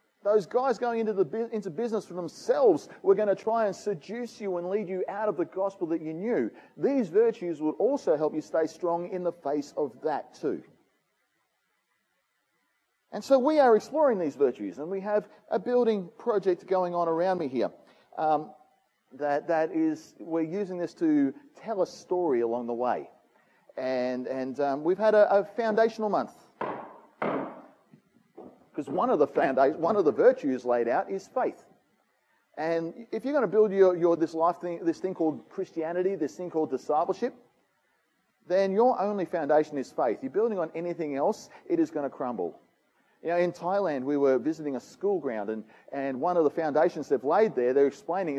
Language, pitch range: English, 155-215 Hz